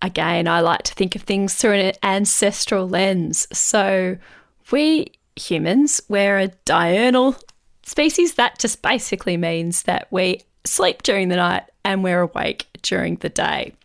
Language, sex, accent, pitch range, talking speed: English, female, Australian, 185-225 Hz, 145 wpm